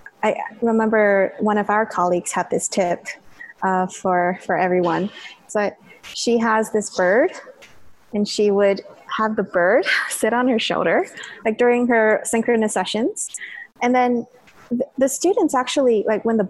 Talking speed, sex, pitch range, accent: 150 wpm, female, 215-275 Hz, American